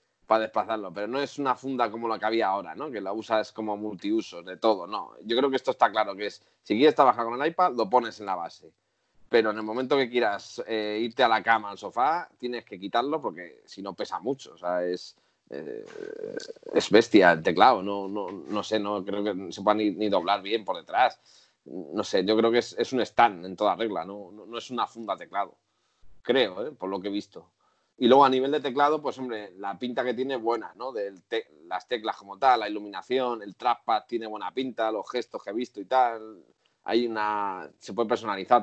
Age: 30-49